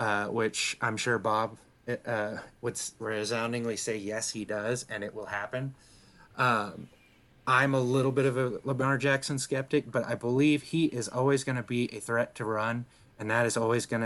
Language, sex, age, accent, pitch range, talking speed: English, male, 30-49, American, 110-125 Hz, 190 wpm